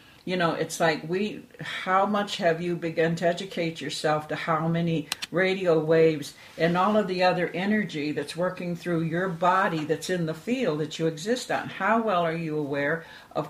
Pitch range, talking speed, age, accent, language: 150-175 Hz, 190 wpm, 60-79, American, English